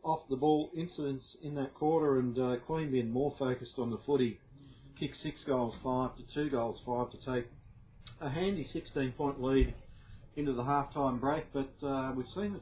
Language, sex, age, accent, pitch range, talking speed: English, male, 40-59, Australian, 125-145 Hz, 195 wpm